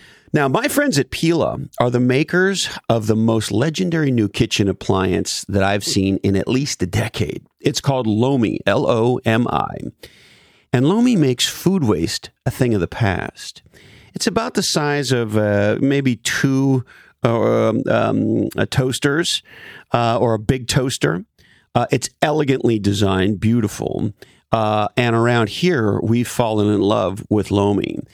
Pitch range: 105-135 Hz